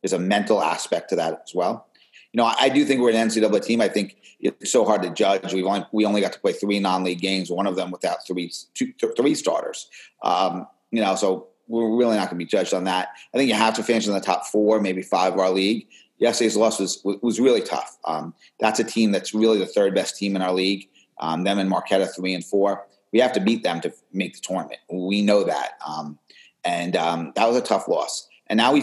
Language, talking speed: English, 250 wpm